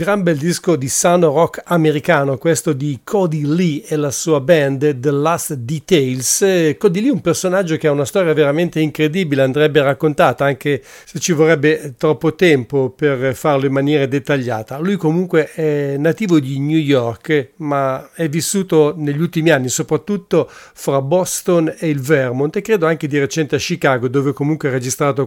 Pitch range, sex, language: 140-165 Hz, male, English